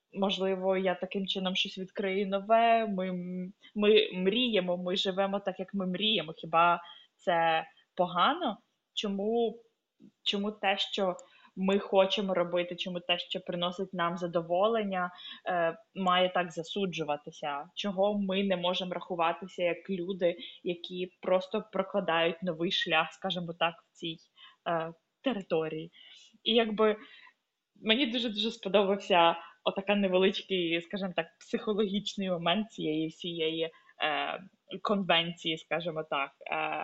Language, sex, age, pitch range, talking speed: Ukrainian, female, 20-39, 170-205 Hz, 115 wpm